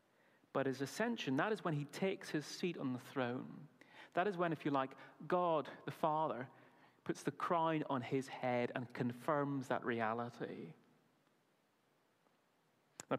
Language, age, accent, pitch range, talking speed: English, 30-49, British, 130-185 Hz, 150 wpm